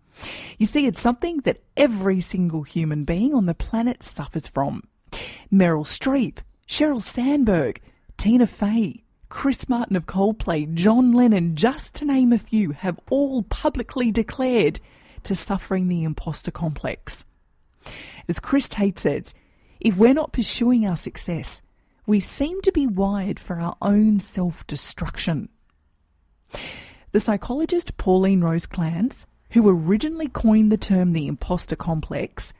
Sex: female